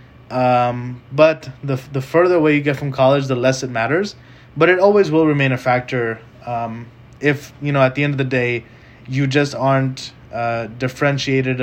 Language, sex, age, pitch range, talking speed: English, male, 20-39, 120-130 Hz, 185 wpm